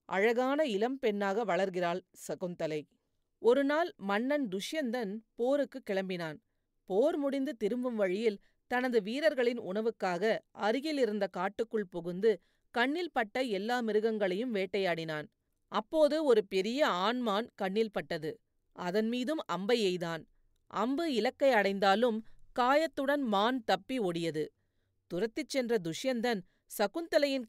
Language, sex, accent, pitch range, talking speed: Tamil, female, native, 190-255 Hz, 100 wpm